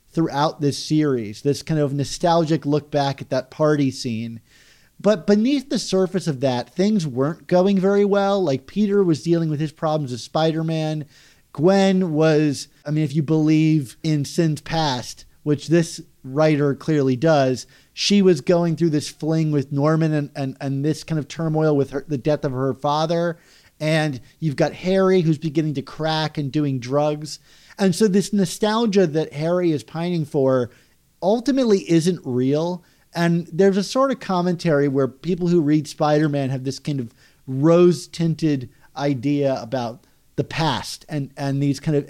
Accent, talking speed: American, 165 wpm